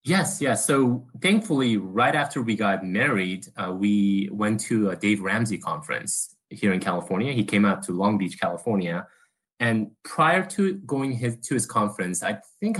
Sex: male